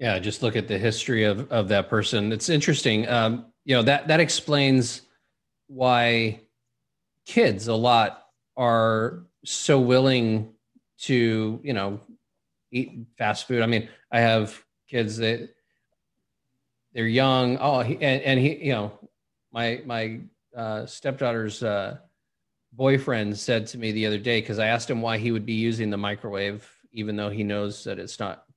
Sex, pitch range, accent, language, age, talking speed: male, 110-140 Hz, American, English, 30-49, 160 wpm